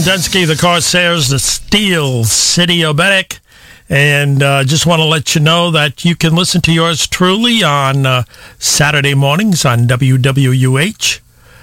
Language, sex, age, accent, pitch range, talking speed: English, male, 50-69, American, 130-165 Hz, 145 wpm